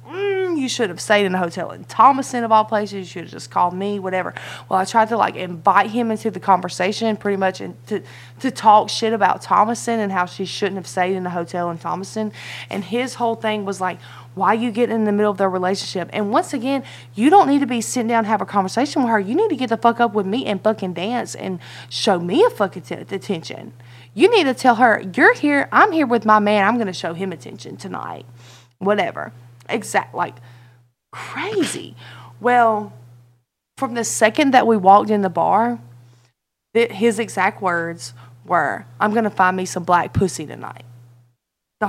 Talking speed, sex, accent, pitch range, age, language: 215 wpm, female, American, 170-235 Hz, 20-39, English